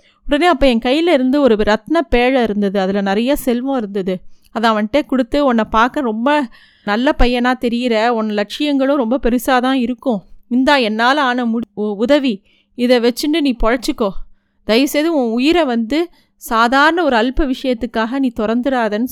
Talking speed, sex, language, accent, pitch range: 150 wpm, female, Tamil, native, 230-290 Hz